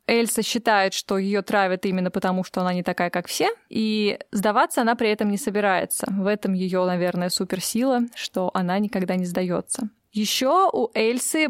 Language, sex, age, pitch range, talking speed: Russian, female, 20-39, 190-235 Hz, 170 wpm